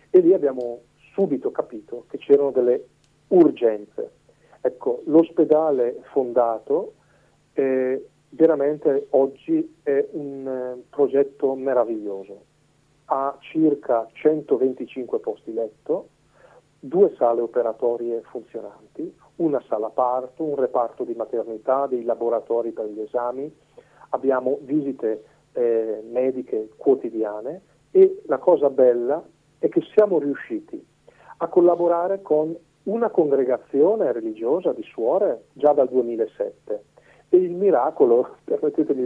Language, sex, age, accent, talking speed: Italian, male, 40-59, native, 105 wpm